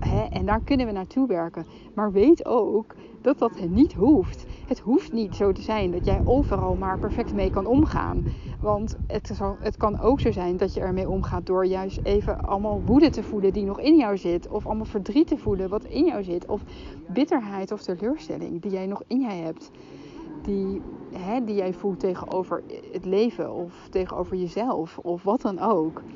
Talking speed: 190 wpm